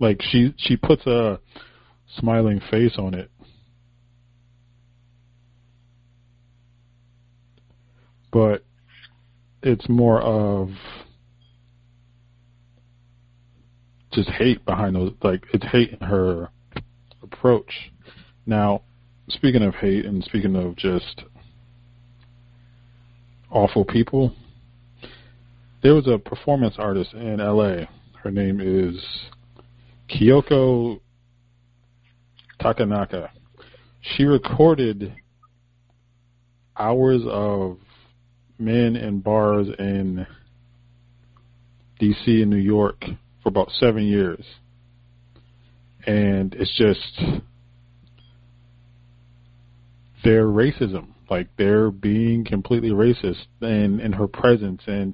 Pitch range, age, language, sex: 105-120 Hz, 20-39, English, male